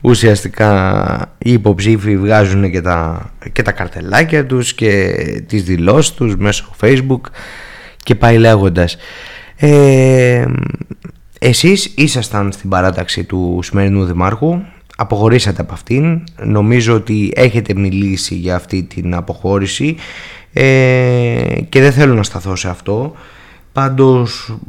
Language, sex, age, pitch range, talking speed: Greek, male, 20-39, 100-135 Hz, 115 wpm